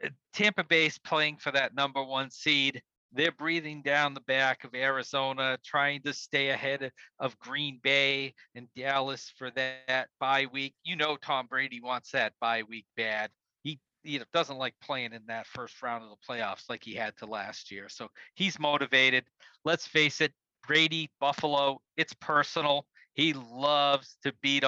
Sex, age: male, 40-59